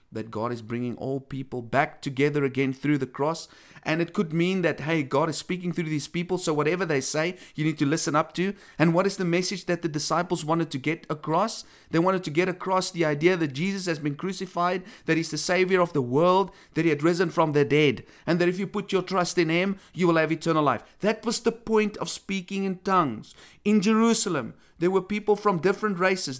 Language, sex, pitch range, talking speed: English, male, 145-185 Hz, 235 wpm